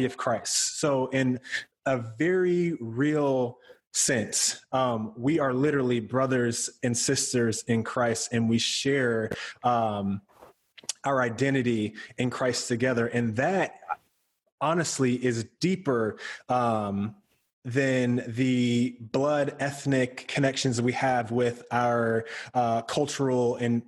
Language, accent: English, American